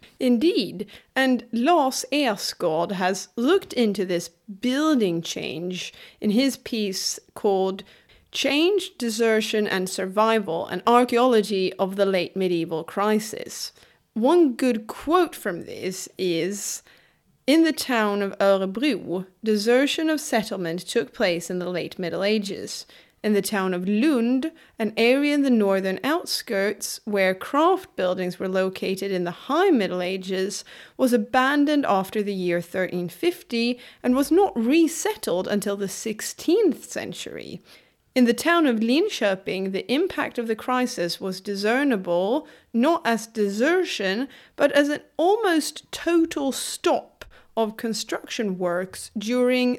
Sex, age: female, 30-49